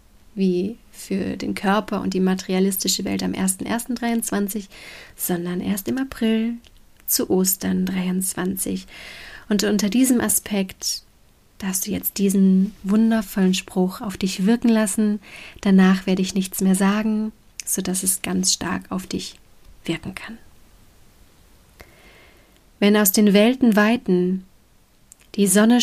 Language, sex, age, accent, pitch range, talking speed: German, female, 30-49, German, 180-210 Hz, 120 wpm